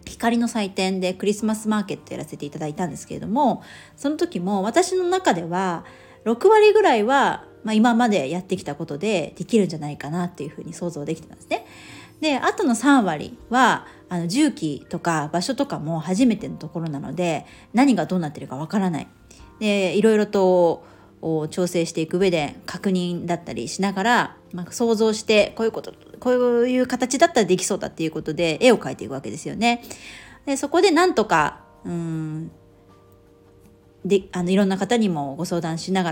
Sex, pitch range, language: female, 160-225 Hz, Japanese